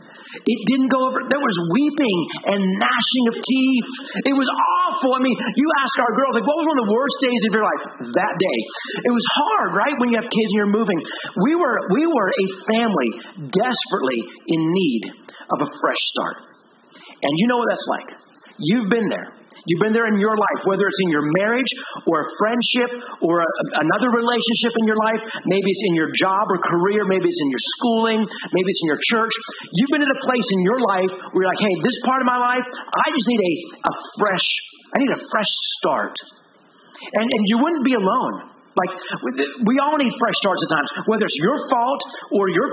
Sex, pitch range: male, 195-255 Hz